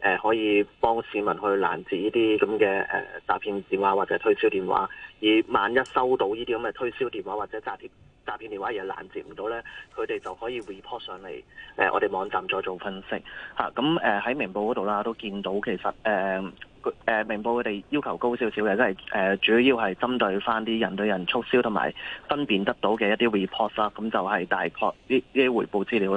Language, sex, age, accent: Chinese, male, 20-39, native